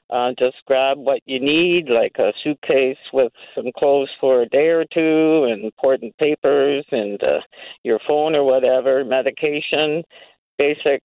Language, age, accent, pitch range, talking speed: English, 50-69, American, 135-155 Hz, 150 wpm